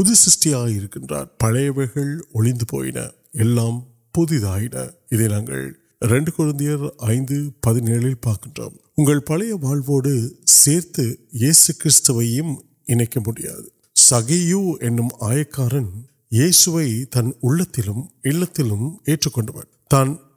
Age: 50-69